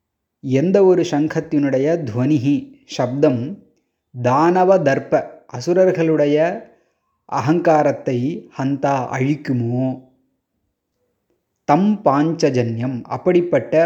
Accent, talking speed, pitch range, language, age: native, 50 wpm, 130-160 Hz, Tamil, 20-39